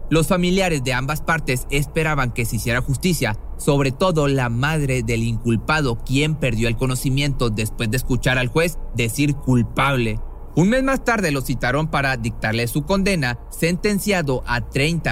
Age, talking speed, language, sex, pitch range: 30-49, 160 wpm, Spanish, male, 115-150 Hz